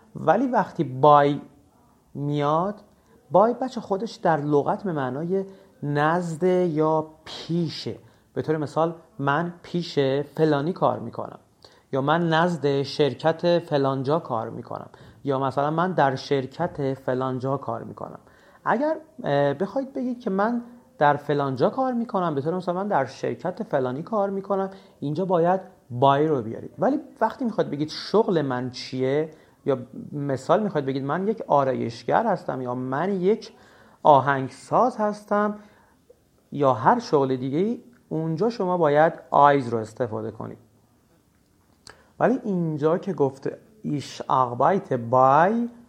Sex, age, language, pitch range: male, 40-59, Persian, 135-195 Hz